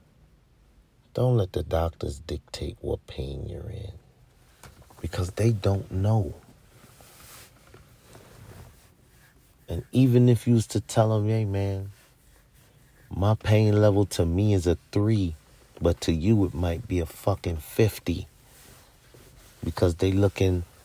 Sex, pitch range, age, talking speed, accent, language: male, 85-110 Hz, 40-59, 125 wpm, American, English